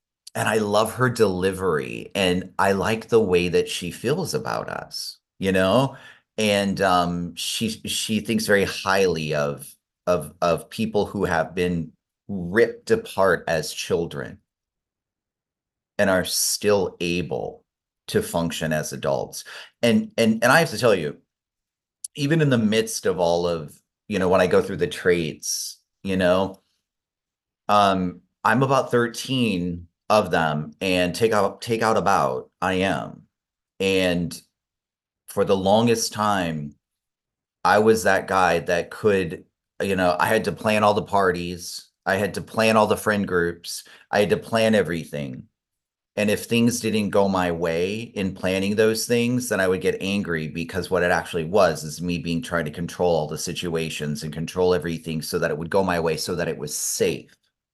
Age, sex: 30-49, male